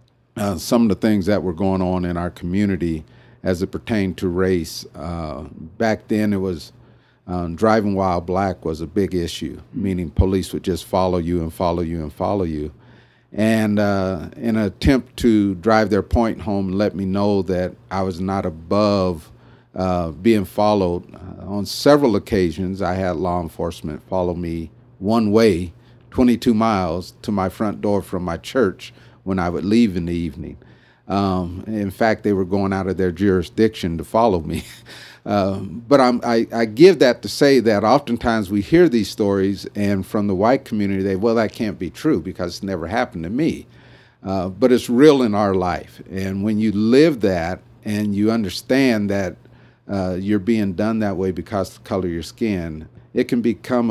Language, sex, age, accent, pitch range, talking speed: English, male, 50-69, American, 90-110 Hz, 185 wpm